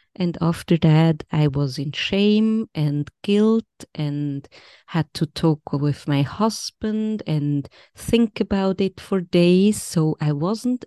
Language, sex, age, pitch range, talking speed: English, female, 20-39, 145-190 Hz, 140 wpm